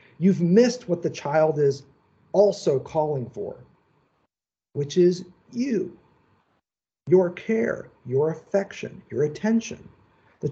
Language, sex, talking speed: English, male, 110 wpm